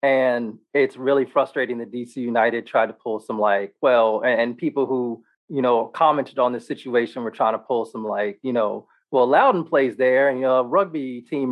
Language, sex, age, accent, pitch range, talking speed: English, male, 30-49, American, 120-155 Hz, 210 wpm